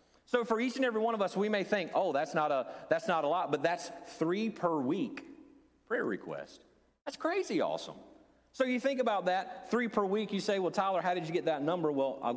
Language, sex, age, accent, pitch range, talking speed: English, male, 40-59, American, 130-200 Hz, 240 wpm